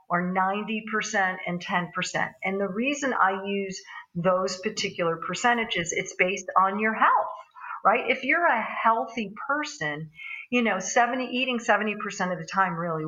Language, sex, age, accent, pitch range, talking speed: English, female, 50-69, American, 170-225 Hz, 140 wpm